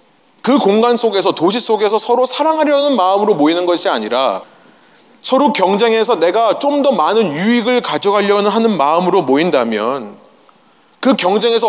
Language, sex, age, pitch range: Korean, male, 30-49, 185-250 Hz